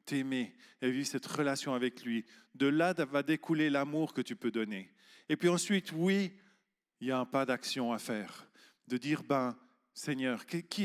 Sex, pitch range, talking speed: male, 125-155 Hz, 185 wpm